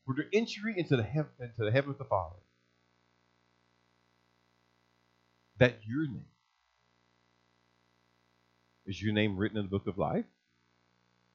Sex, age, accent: male, 50-69, American